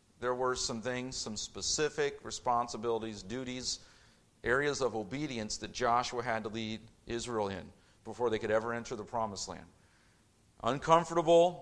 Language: English